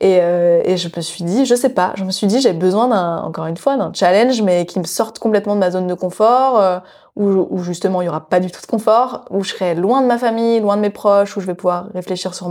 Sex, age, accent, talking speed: female, 20-39, French, 295 wpm